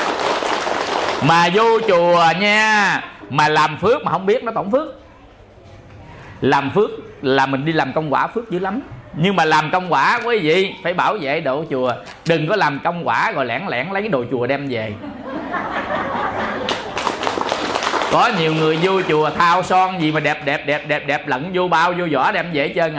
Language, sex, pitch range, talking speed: English, male, 150-210 Hz, 195 wpm